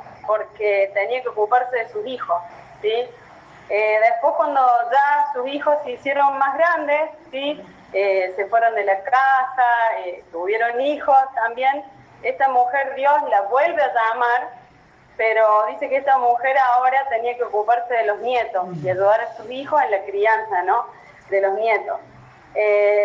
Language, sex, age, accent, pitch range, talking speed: Spanish, female, 20-39, Argentinian, 205-275 Hz, 160 wpm